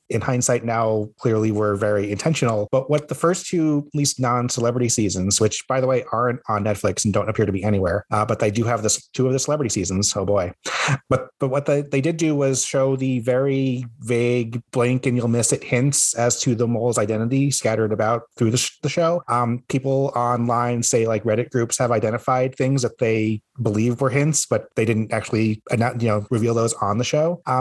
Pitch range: 110-130 Hz